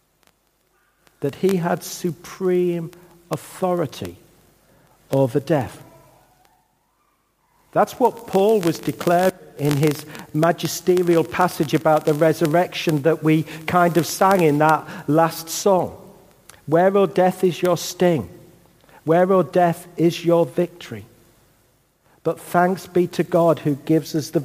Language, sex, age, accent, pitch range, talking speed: English, male, 50-69, British, 150-185 Hz, 120 wpm